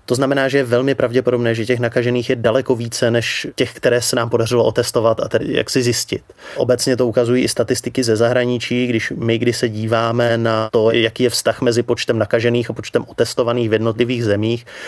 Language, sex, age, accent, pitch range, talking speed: Czech, male, 30-49, native, 115-125 Hz, 200 wpm